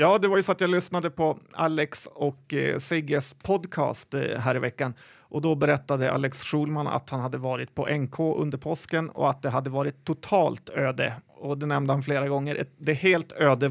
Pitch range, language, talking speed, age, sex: 135-160 Hz, Swedish, 195 wpm, 30-49, male